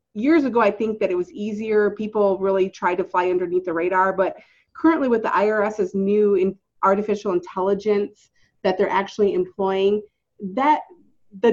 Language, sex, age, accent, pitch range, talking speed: English, female, 30-49, American, 195-255 Hz, 160 wpm